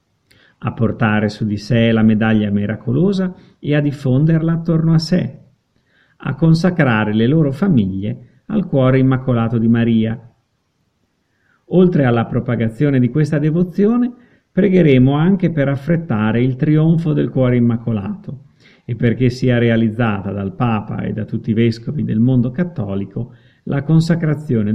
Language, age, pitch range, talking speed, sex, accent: Italian, 50-69, 115-160 Hz, 135 wpm, male, native